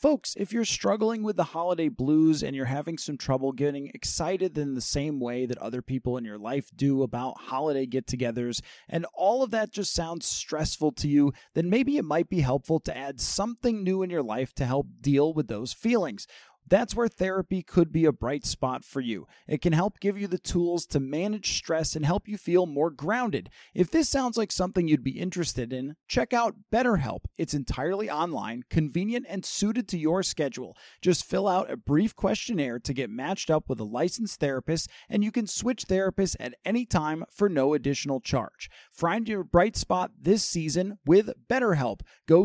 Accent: American